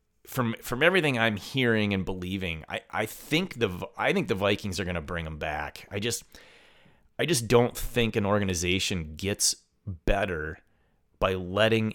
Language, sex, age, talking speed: English, male, 30-49, 165 wpm